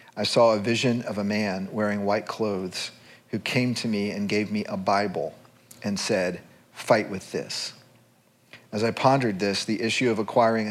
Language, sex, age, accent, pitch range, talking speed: English, male, 40-59, American, 100-115 Hz, 180 wpm